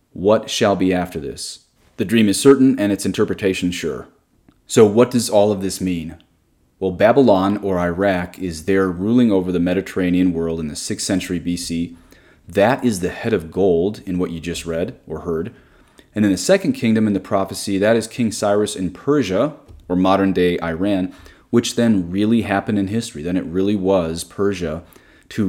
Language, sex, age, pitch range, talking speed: English, male, 30-49, 90-110 Hz, 185 wpm